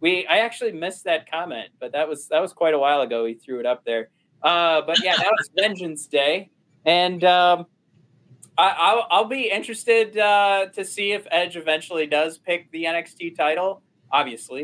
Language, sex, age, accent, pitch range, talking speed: English, male, 20-39, American, 140-195 Hz, 185 wpm